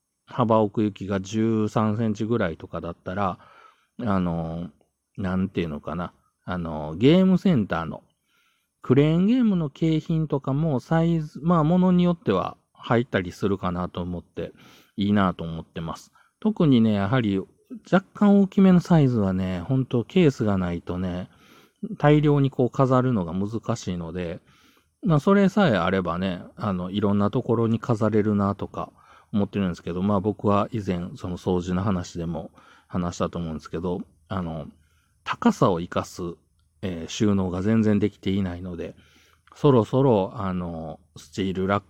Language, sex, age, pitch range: Japanese, male, 40-59, 90-130 Hz